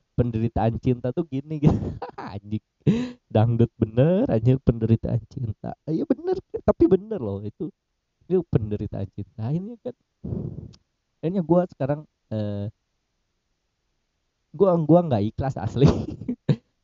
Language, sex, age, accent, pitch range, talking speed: Indonesian, male, 20-39, native, 110-160 Hz, 120 wpm